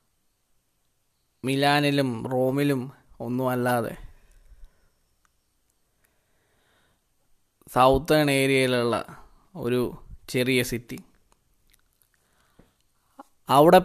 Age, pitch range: 20-39, 125-150 Hz